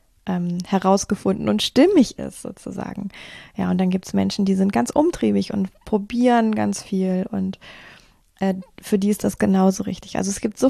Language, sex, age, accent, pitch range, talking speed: German, female, 20-39, German, 185-220 Hz, 180 wpm